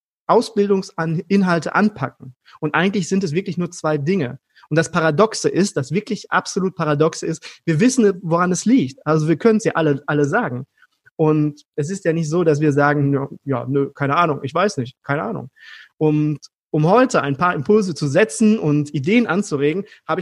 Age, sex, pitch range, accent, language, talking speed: 30-49, male, 150-200 Hz, German, German, 190 wpm